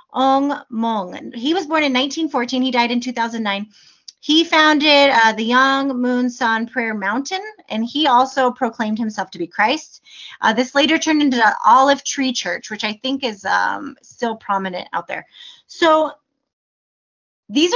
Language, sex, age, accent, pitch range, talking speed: English, female, 30-49, American, 230-310 Hz, 160 wpm